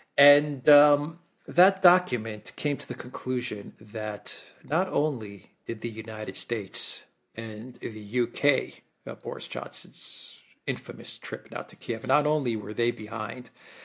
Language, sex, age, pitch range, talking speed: English, male, 50-69, 115-150 Hz, 135 wpm